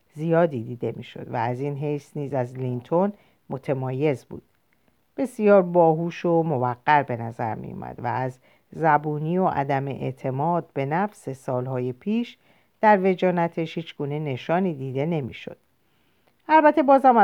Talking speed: 130 wpm